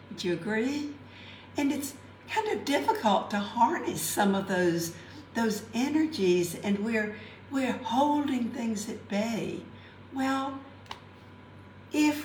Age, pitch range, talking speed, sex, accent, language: 60-79, 170-240 Hz, 120 wpm, female, American, English